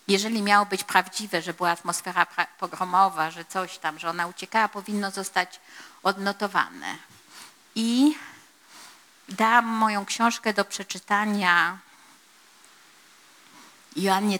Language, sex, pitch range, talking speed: Polish, female, 180-220 Hz, 100 wpm